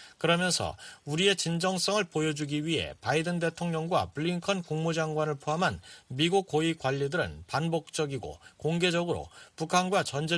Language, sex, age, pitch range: Korean, male, 40-59, 140-175 Hz